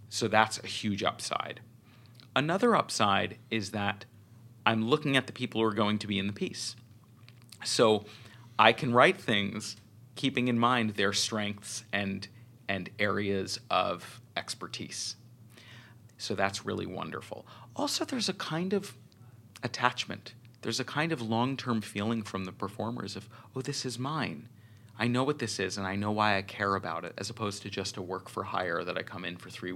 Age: 30-49